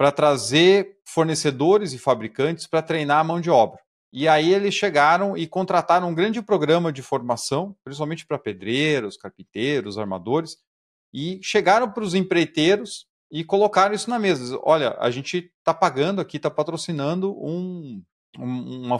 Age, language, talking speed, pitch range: 40-59, Portuguese, 150 wpm, 130-175 Hz